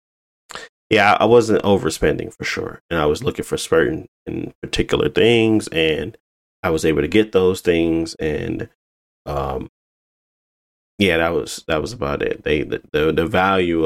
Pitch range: 75-100 Hz